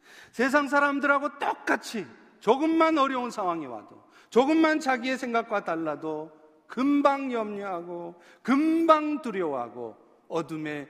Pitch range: 180-245 Hz